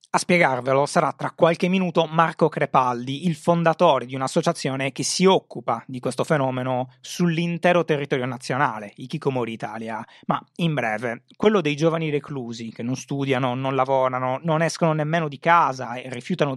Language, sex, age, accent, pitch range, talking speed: Italian, male, 30-49, native, 125-165 Hz, 155 wpm